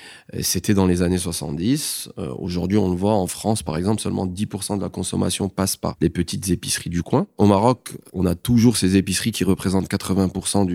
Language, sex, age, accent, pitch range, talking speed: French, male, 30-49, French, 95-115 Hz, 205 wpm